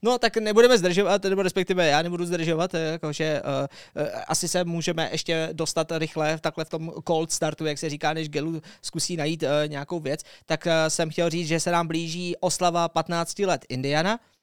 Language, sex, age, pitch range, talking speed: Czech, male, 20-39, 155-170 Hz, 185 wpm